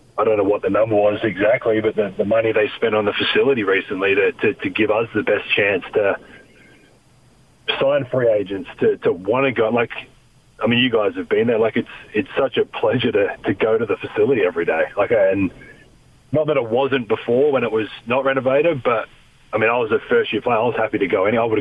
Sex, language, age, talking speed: male, English, 40-59, 240 wpm